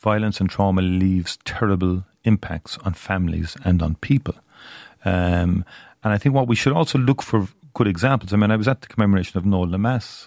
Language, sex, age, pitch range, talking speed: English, male, 40-59, 90-115 Hz, 195 wpm